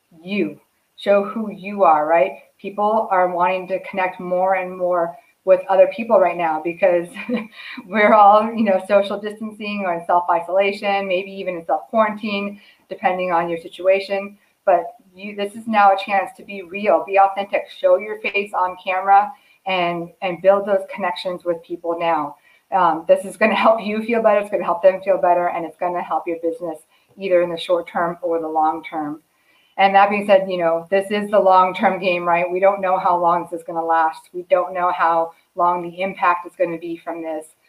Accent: American